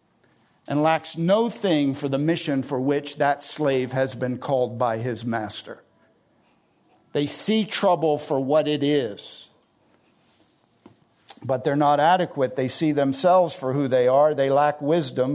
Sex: male